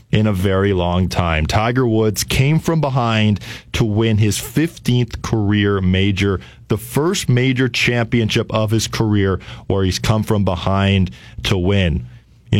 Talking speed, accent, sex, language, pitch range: 150 wpm, American, male, English, 90-110 Hz